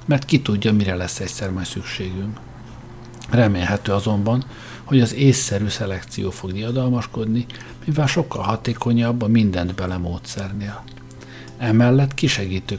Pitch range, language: 100-125 Hz, Hungarian